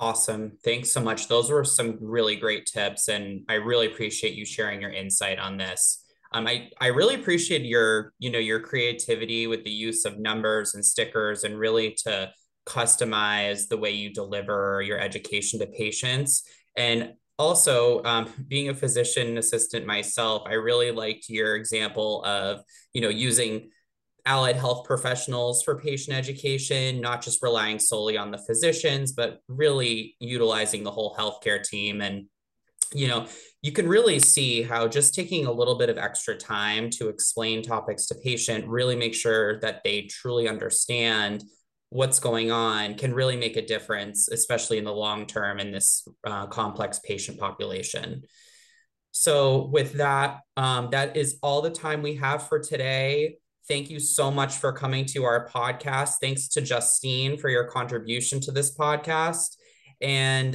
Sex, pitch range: male, 110-135 Hz